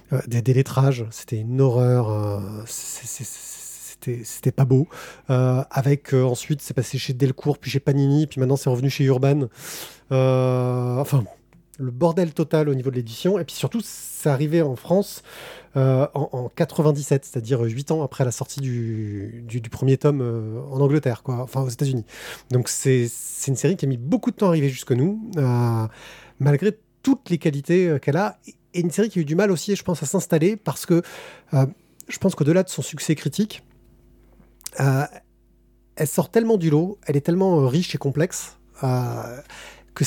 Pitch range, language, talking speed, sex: 125-165 Hz, French, 195 wpm, male